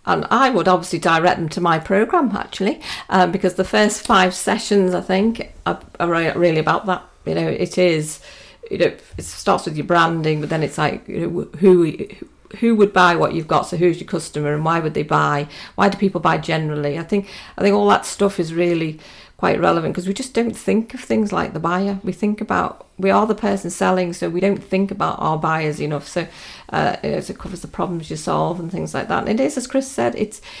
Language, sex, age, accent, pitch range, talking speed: English, female, 50-69, British, 170-210 Hz, 235 wpm